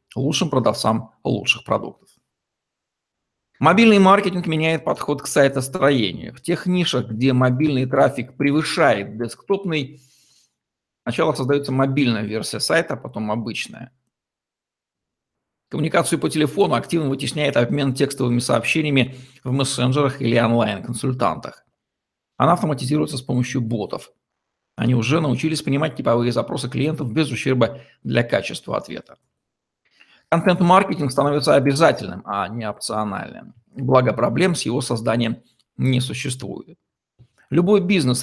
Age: 50-69